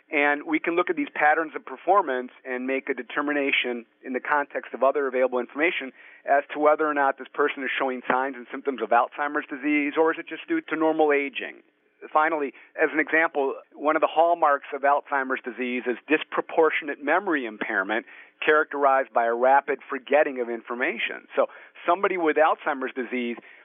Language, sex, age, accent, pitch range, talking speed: English, male, 40-59, American, 130-165 Hz, 180 wpm